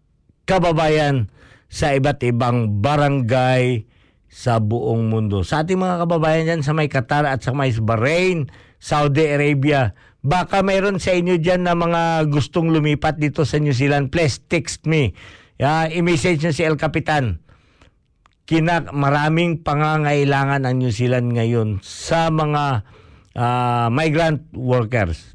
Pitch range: 115-155 Hz